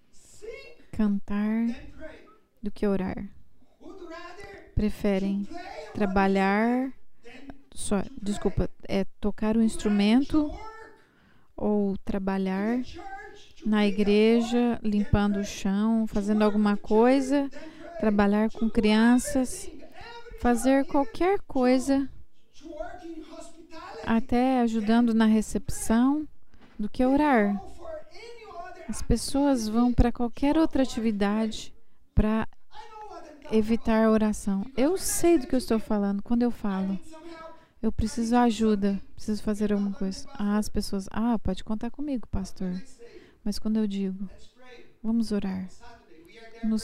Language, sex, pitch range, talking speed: English, female, 210-285 Hz, 100 wpm